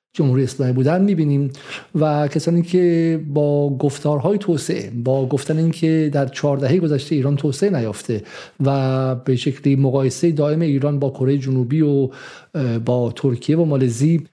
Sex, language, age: male, Persian, 50-69